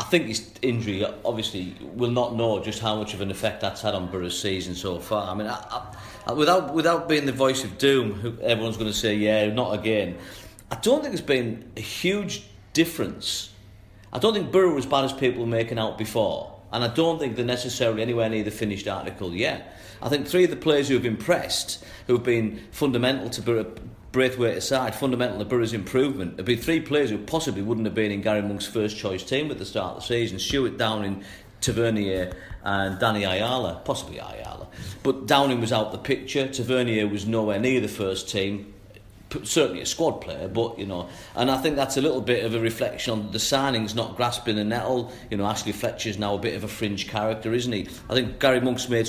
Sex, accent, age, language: male, British, 40-59, English